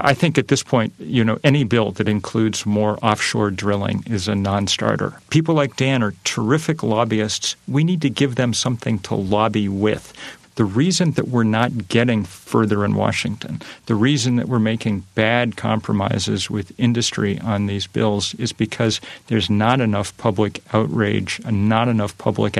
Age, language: 40-59, English